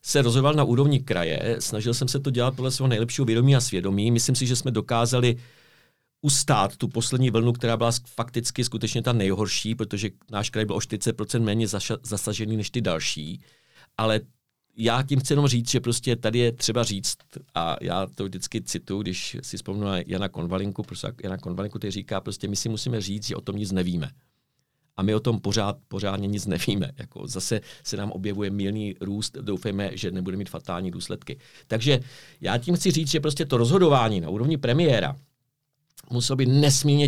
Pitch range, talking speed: 105-140 Hz, 185 wpm